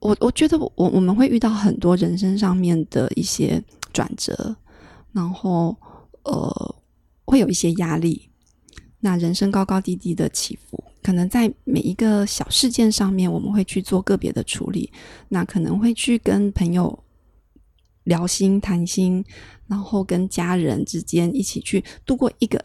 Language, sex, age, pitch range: Chinese, female, 20-39, 180-225 Hz